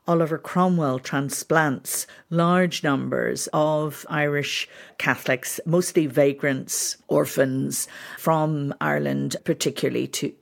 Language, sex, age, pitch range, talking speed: English, female, 50-69, 145-175 Hz, 85 wpm